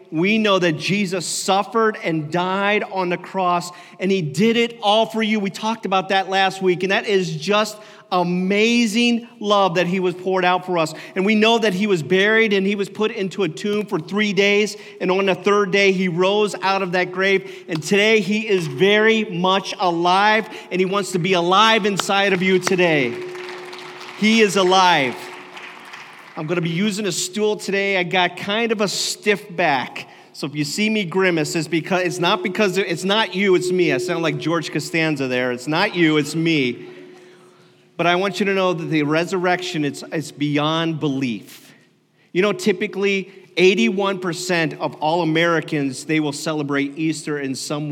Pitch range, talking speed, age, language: 160-205 Hz, 190 wpm, 40-59, English